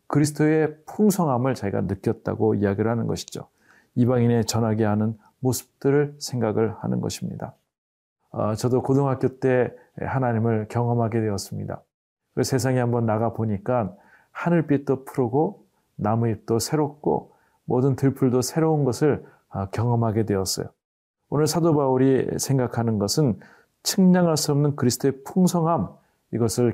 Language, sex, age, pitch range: Korean, male, 40-59, 115-145 Hz